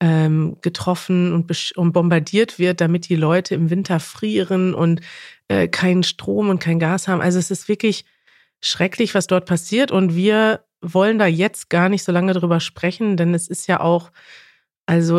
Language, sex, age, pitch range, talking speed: German, female, 30-49, 170-195 Hz, 165 wpm